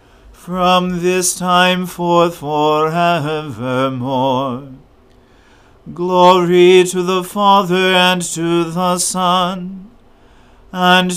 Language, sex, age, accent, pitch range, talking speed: English, male, 40-59, American, 150-180 Hz, 75 wpm